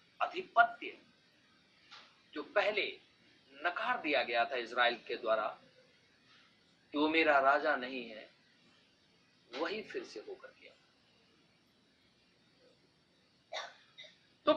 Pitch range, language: 240-360 Hz, Hindi